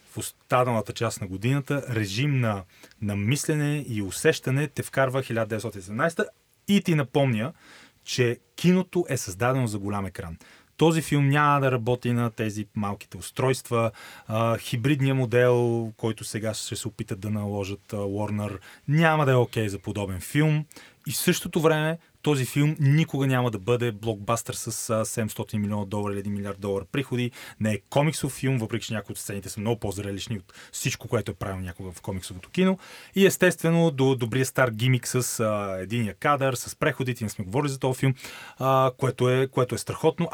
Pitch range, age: 110-145 Hz, 30-49